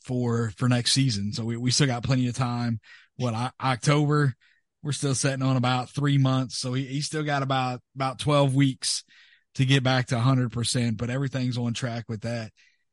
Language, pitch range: English, 125-145 Hz